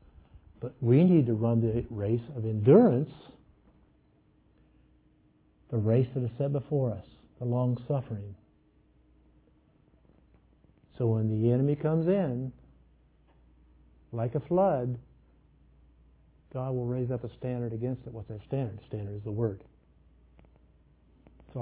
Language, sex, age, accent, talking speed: English, male, 60-79, American, 120 wpm